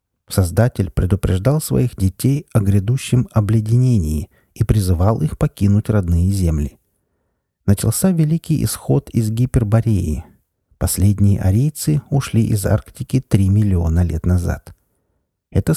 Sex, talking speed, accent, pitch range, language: male, 105 wpm, native, 90-125 Hz, Russian